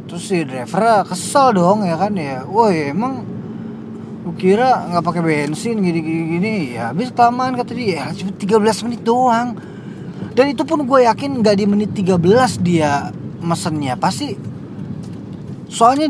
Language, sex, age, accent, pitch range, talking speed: Indonesian, male, 20-39, native, 175-235 Hz, 155 wpm